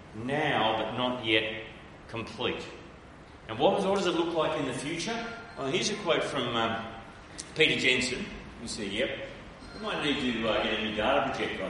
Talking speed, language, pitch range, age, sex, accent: 190 wpm, English, 130-190 Hz, 40-59, male, Australian